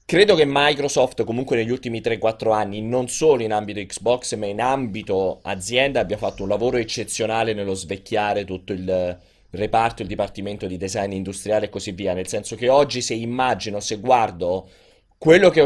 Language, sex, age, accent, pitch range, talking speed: Italian, male, 30-49, native, 105-140 Hz, 175 wpm